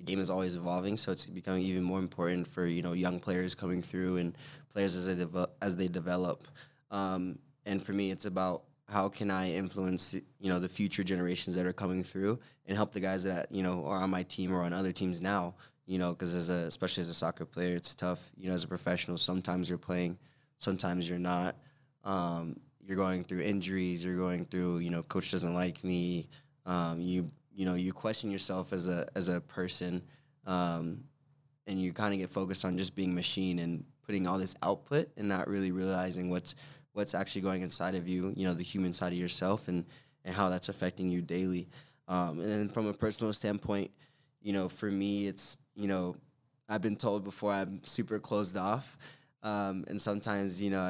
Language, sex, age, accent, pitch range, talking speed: English, male, 20-39, American, 90-100 Hz, 210 wpm